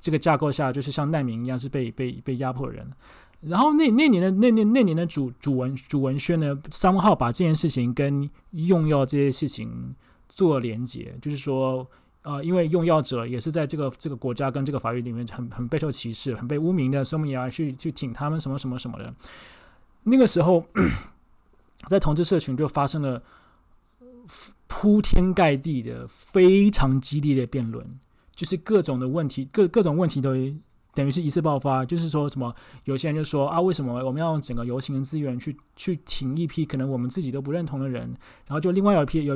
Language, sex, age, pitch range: Chinese, male, 20-39, 130-170 Hz